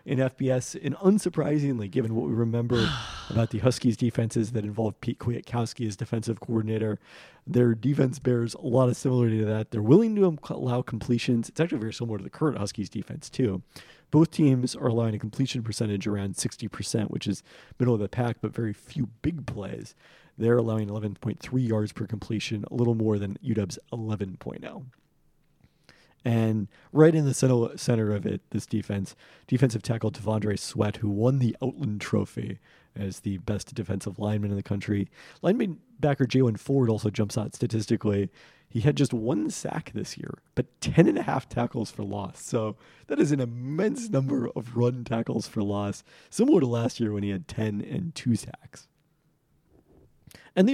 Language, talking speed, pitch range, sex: English, 175 wpm, 105-130 Hz, male